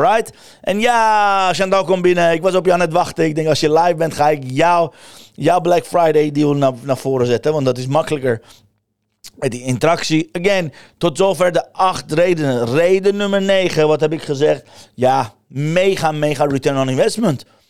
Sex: male